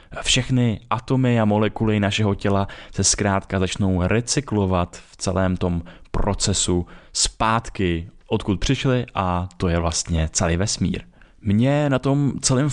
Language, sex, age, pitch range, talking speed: Czech, male, 20-39, 95-115 Hz, 125 wpm